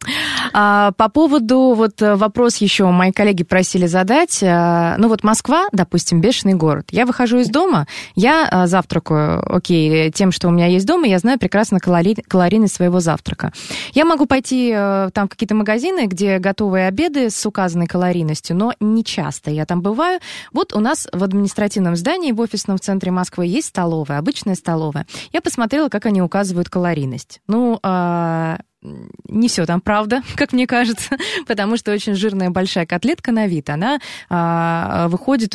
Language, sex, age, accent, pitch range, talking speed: Russian, female, 20-39, native, 180-235 Hz, 150 wpm